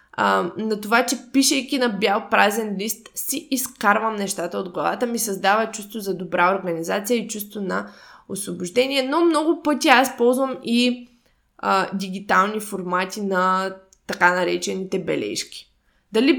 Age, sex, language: 20-39, female, Bulgarian